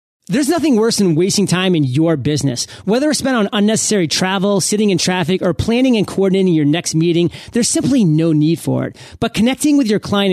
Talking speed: 210 wpm